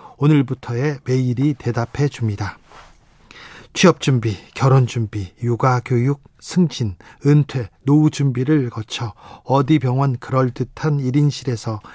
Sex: male